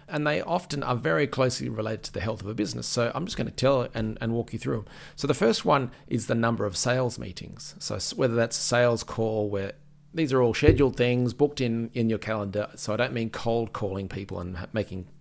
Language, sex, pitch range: English, male, 105-135 Hz